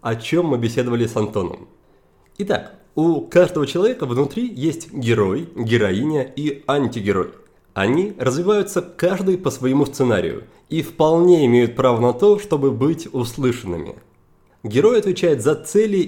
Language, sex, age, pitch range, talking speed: Russian, male, 30-49, 120-175 Hz, 130 wpm